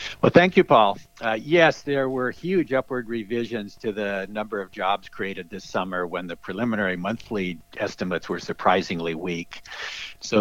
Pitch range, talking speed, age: 95-115 Hz, 160 wpm, 60-79